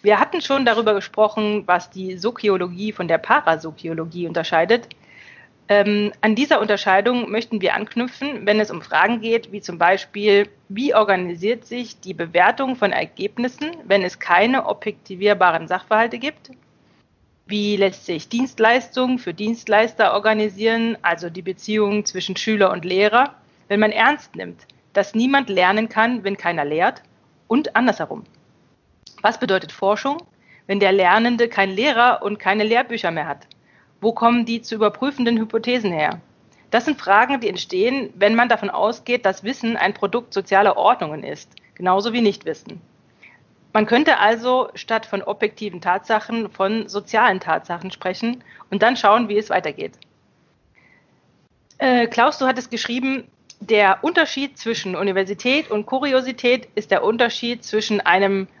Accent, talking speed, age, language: German, 140 wpm, 30-49, German